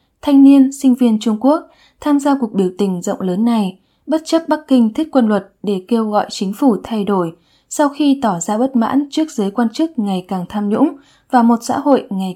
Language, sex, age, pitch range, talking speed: English, female, 10-29, 200-260 Hz, 230 wpm